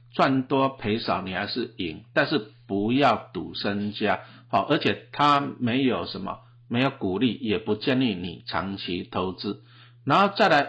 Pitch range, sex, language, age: 110-130 Hz, male, Chinese, 50-69